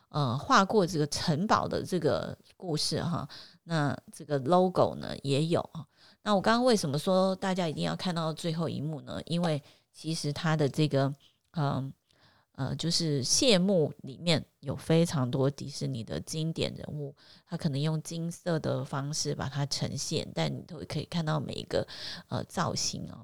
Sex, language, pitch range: female, Chinese, 140-180 Hz